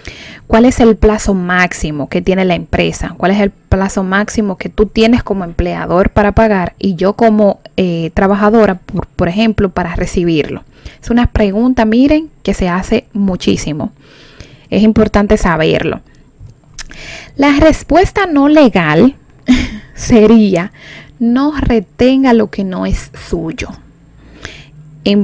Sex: female